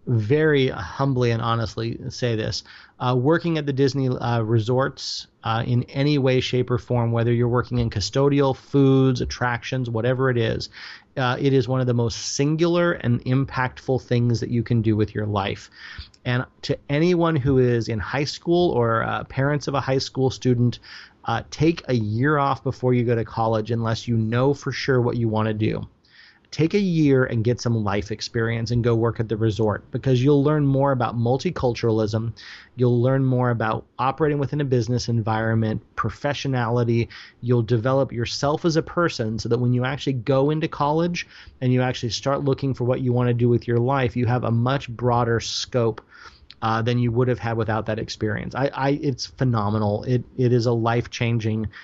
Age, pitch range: 30-49, 115-135 Hz